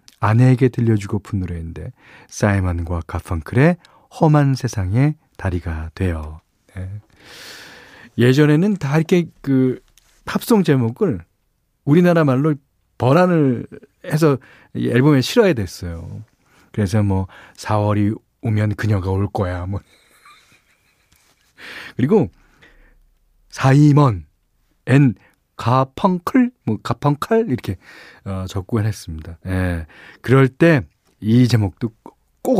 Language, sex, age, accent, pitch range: Korean, male, 40-59, native, 100-145 Hz